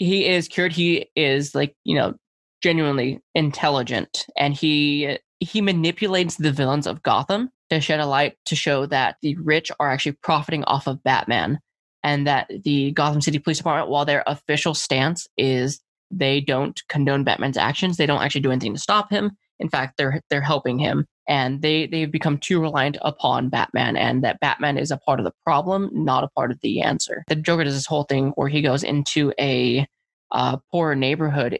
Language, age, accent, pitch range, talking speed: English, 20-39, American, 135-160 Hz, 190 wpm